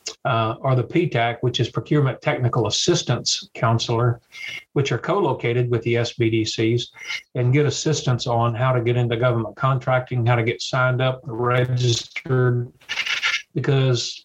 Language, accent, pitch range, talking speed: English, American, 120-140 Hz, 140 wpm